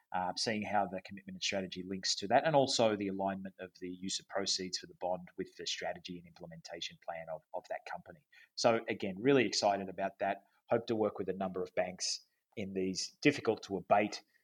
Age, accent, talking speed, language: 30-49, Australian, 210 wpm, English